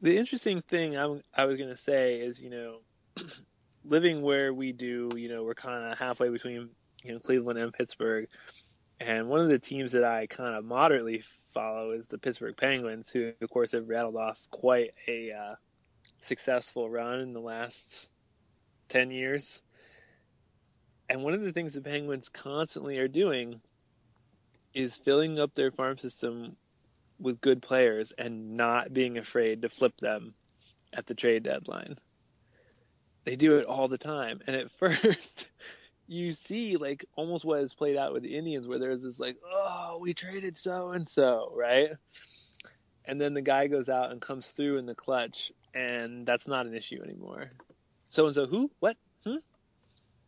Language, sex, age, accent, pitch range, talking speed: English, male, 20-39, American, 115-145 Hz, 170 wpm